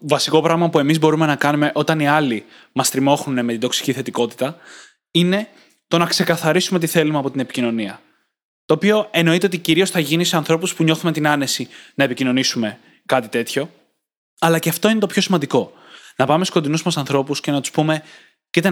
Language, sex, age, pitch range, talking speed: Greek, male, 20-39, 140-180 Hz, 190 wpm